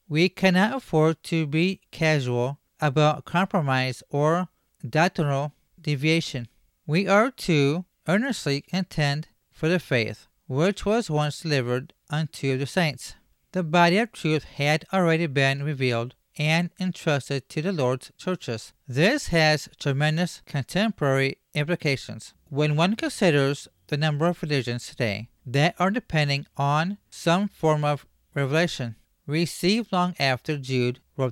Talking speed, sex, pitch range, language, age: 125 wpm, male, 140-180 Hz, English, 40-59